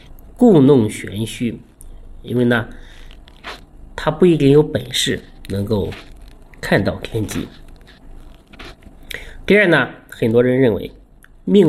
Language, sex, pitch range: Chinese, male, 110-145 Hz